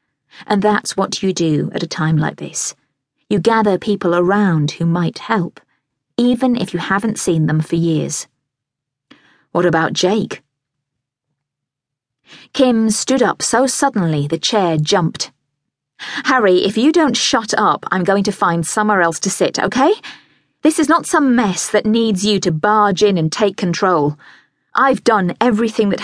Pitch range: 150-210 Hz